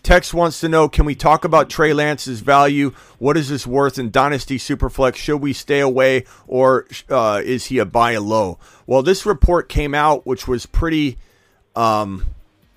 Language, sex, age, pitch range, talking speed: English, male, 40-59, 105-135 Hz, 185 wpm